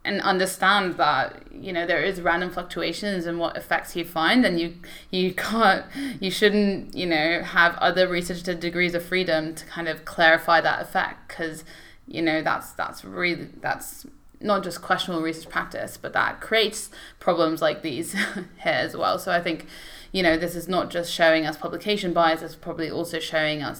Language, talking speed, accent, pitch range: English, 185 wpm, British, 160-180 Hz